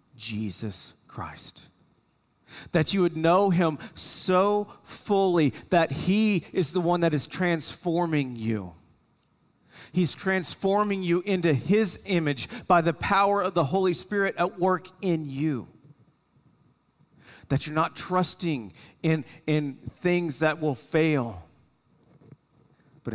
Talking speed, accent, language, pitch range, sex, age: 120 wpm, American, English, 140-175 Hz, male, 40-59